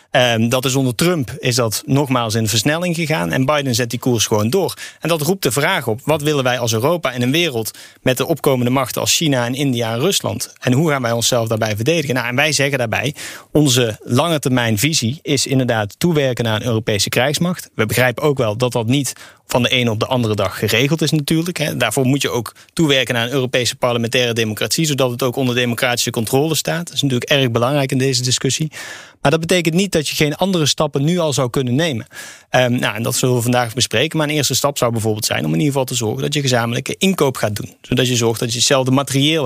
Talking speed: 235 wpm